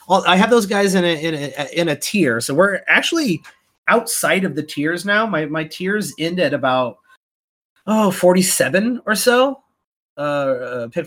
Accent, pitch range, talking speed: American, 120-170 Hz, 170 wpm